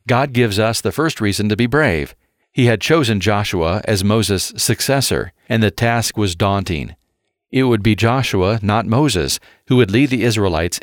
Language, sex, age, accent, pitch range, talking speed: English, male, 50-69, American, 105-125 Hz, 175 wpm